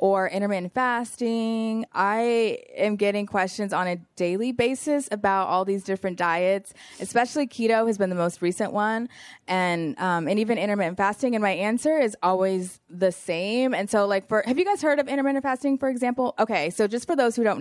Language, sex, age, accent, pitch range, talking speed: English, female, 20-39, American, 185-235 Hz, 200 wpm